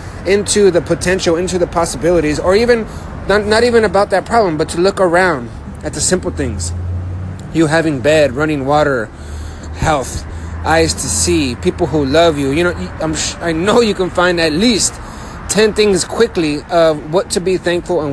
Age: 30-49